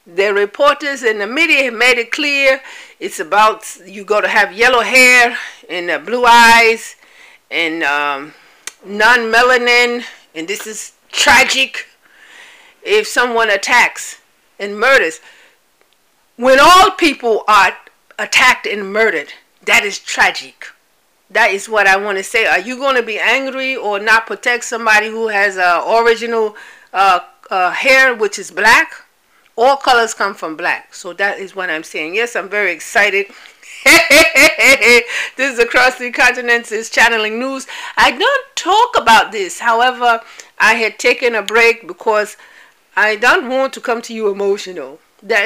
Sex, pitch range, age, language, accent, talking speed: female, 200-260 Hz, 50-69, English, American, 150 wpm